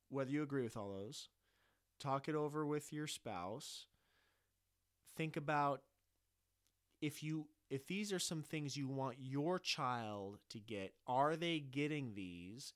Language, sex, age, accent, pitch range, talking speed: English, male, 30-49, American, 105-140 Hz, 145 wpm